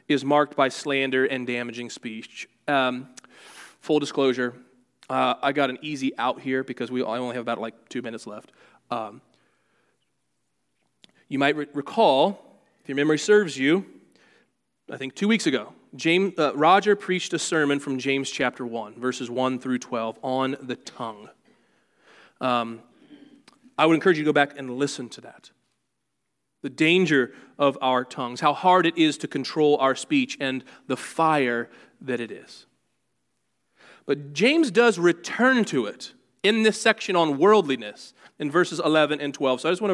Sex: male